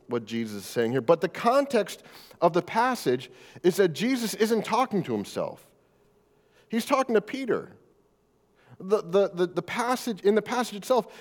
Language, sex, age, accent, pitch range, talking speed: English, male, 40-59, American, 145-210 Hz, 165 wpm